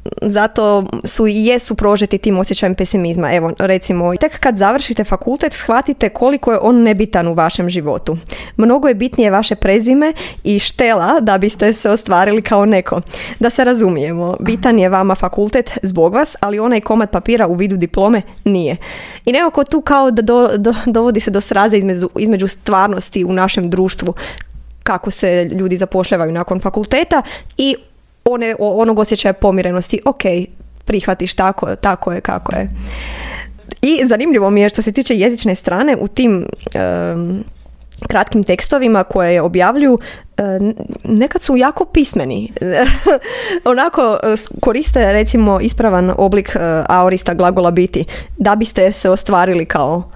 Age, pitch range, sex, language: 20-39, 185-235 Hz, female, Croatian